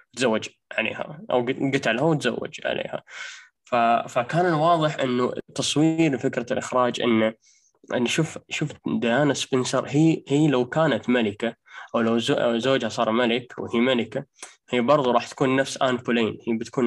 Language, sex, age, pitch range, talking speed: Arabic, male, 10-29, 120-150 Hz, 145 wpm